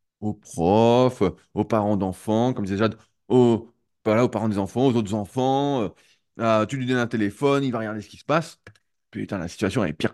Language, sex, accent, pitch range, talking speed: French, male, French, 100-140 Hz, 215 wpm